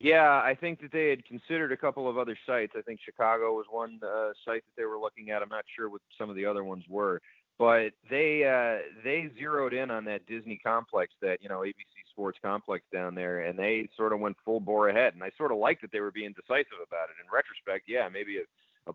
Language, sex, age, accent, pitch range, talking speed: English, male, 30-49, American, 100-135 Hz, 245 wpm